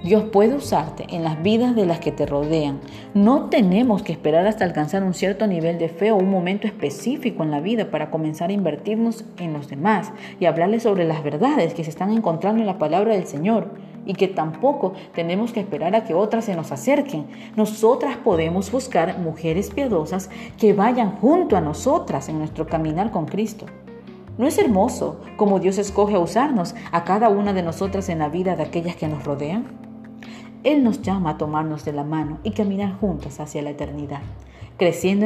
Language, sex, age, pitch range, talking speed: Spanish, female, 40-59, 160-210 Hz, 190 wpm